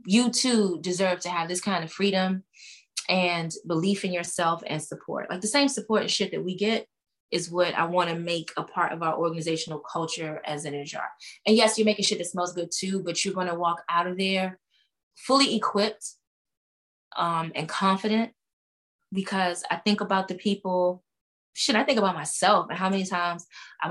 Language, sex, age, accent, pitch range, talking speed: English, female, 20-39, American, 165-195 Hz, 195 wpm